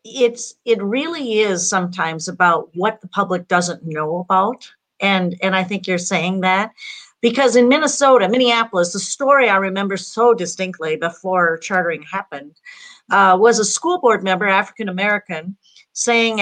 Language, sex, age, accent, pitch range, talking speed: English, female, 50-69, American, 180-235 Hz, 145 wpm